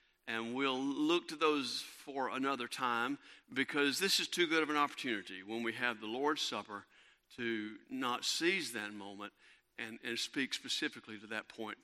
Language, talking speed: English, 170 wpm